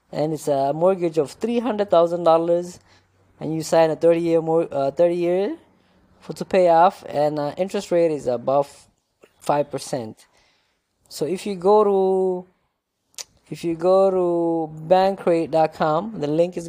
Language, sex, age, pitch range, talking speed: English, female, 20-39, 150-180 Hz, 145 wpm